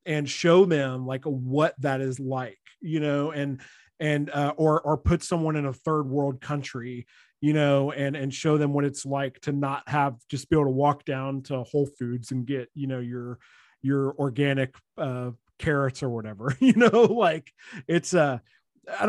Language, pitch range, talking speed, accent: English, 135-155 Hz, 190 wpm, American